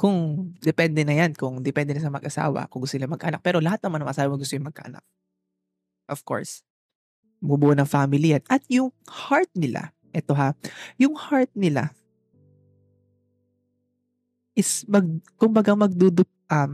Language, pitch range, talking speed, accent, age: Filipino, 140-185 Hz, 145 wpm, native, 20-39